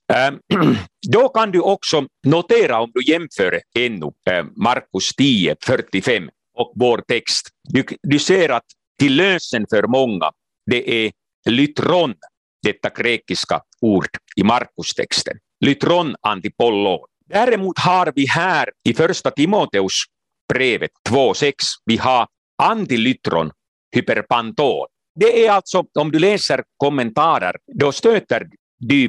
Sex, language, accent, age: male, Swedish, Finnish, 50-69